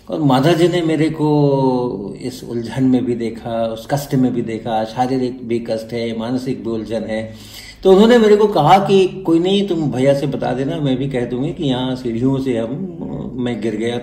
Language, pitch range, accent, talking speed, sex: Hindi, 110-140 Hz, native, 215 wpm, male